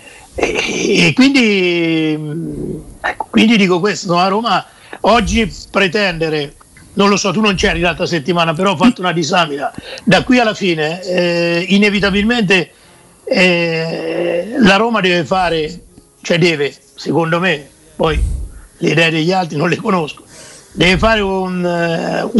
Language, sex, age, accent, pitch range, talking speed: Italian, male, 50-69, native, 170-210 Hz, 135 wpm